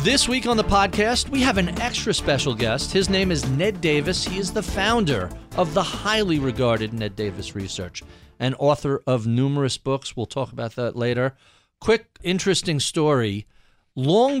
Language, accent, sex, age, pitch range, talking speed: English, American, male, 40-59, 110-165 Hz, 170 wpm